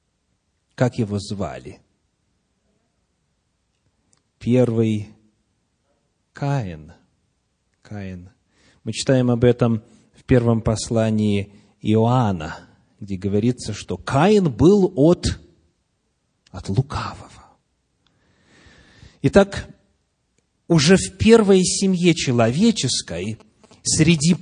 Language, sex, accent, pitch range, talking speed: Russian, male, native, 110-170 Hz, 70 wpm